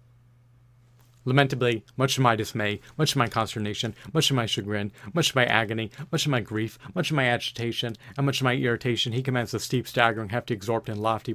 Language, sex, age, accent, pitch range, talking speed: English, male, 40-59, American, 110-125 Hz, 200 wpm